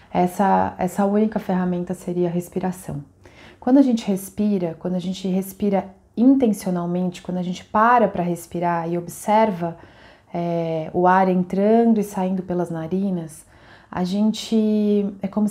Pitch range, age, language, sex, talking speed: 175-215 Hz, 20-39, Portuguese, female, 140 wpm